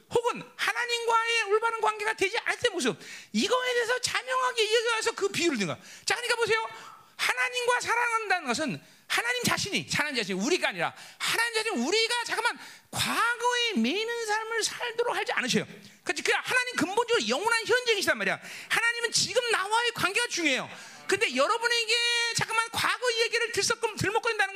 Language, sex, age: Korean, male, 40-59